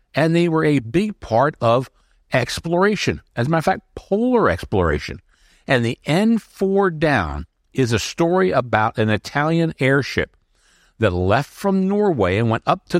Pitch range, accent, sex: 105-155 Hz, American, male